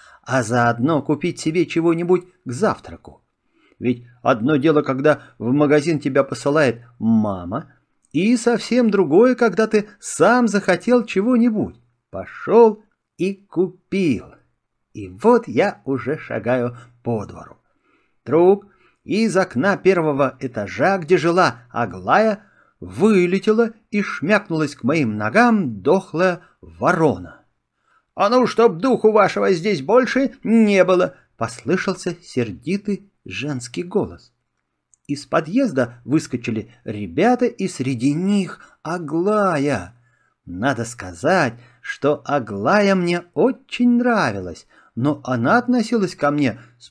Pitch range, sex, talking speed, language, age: 125-205 Hz, male, 105 wpm, Russian, 50-69